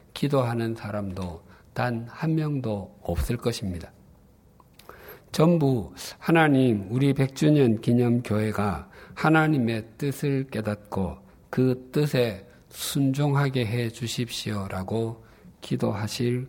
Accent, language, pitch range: native, Korean, 105-140 Hz